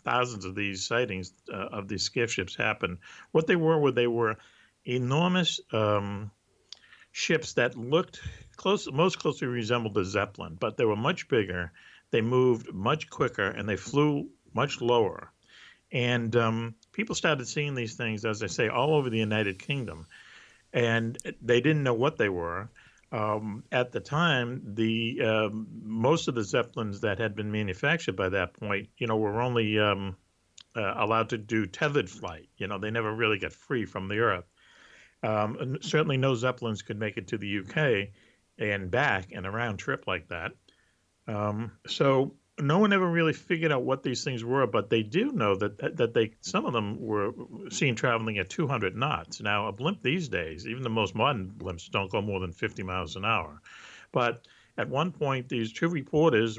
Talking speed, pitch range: 185 wpm, 105-130 Hz